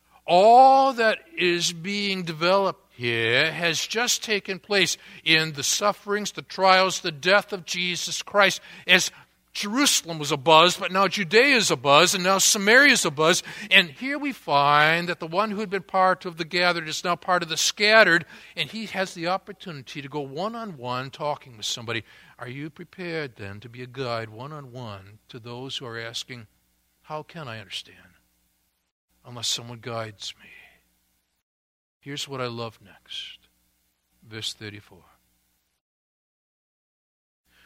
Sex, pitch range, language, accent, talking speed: male, 120-190 Hz, English, American, 150 wpm